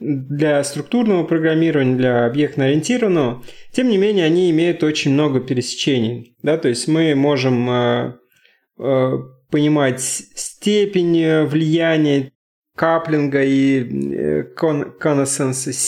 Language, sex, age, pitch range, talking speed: Russian, male, 20-39, 125-165 Hz, 100 wpm